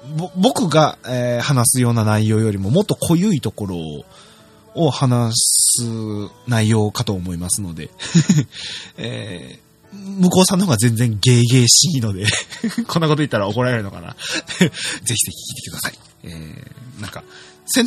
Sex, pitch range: male, 110-165 Hz